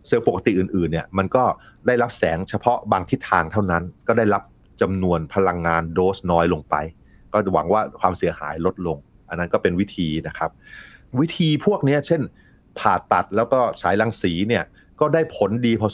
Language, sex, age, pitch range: Thai, male, 30-49, 85-110 Hz